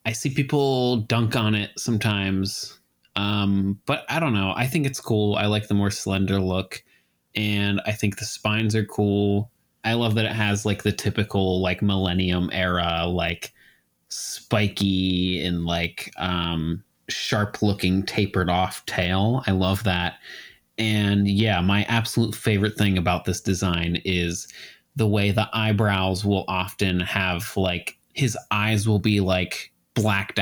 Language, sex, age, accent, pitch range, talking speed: English, male, 20-39, American, 90-115 Hz, 150 wpm